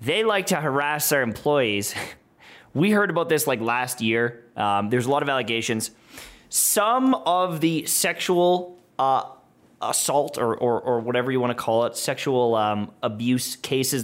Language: English